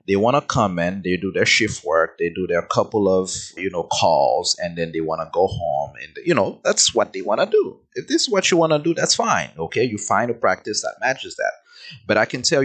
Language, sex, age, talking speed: English, male, 30-49, 265 wpm